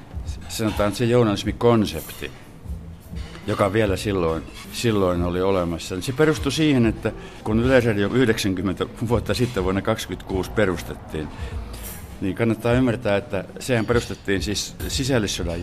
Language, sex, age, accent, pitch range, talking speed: Finnish, male, 60-79, native, 95-120 Hz, 115 wpm